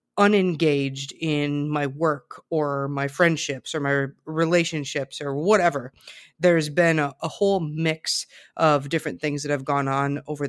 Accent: American